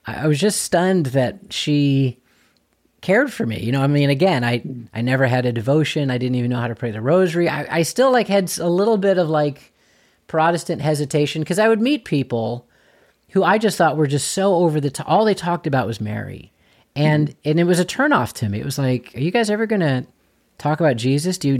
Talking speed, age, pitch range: 235 wpm, 30-49, 120-160 Hz